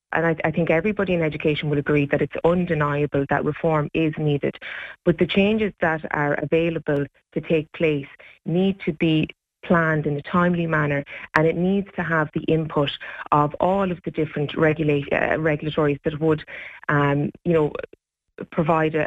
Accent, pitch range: Irish, 150-170 Hz